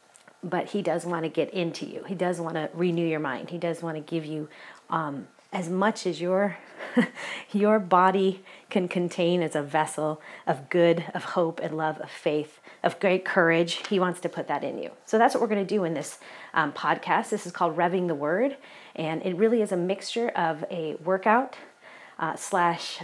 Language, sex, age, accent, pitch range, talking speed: English, female, 30-49, American, 165-210 Hz, 205 wpm